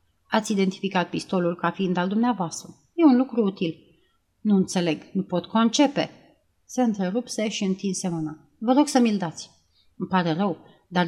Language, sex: Romanian, female